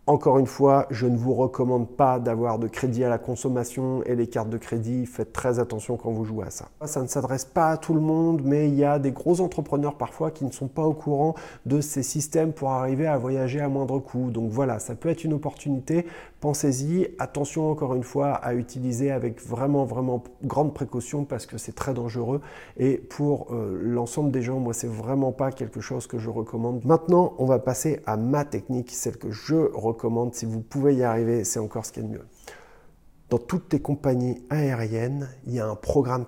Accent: French